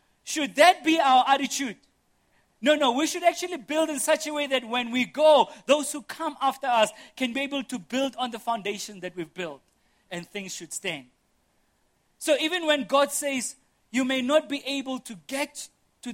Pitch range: 160-265 Hz